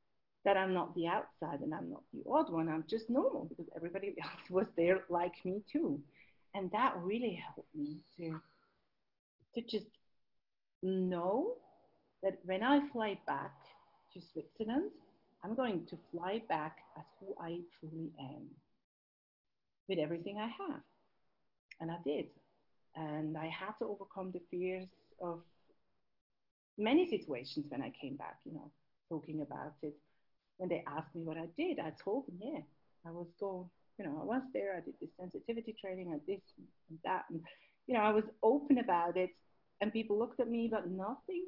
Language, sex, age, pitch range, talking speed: English, female, 40-59, 170-255 Hz, 170 wpm